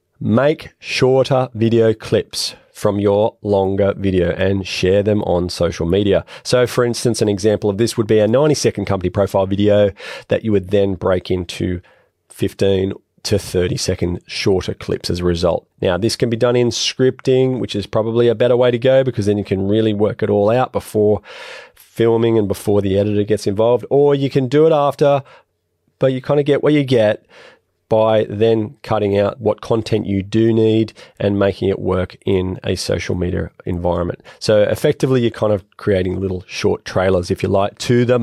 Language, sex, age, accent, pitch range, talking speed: English, male, 30-49, Australian, 95-120 Hz, 190 wpm